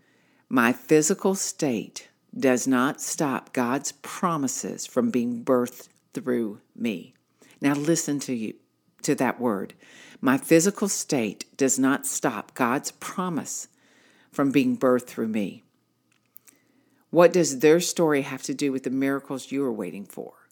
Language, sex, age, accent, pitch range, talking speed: English, female, 60-79, American, 130-170 Hz, 135 wpm